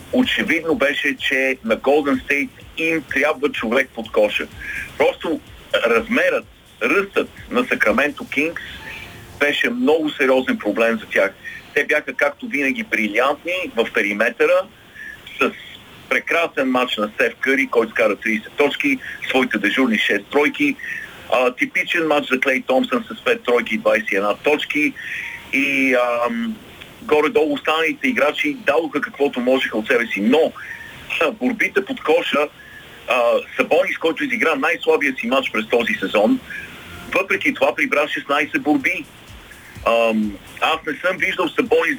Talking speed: 135 wpm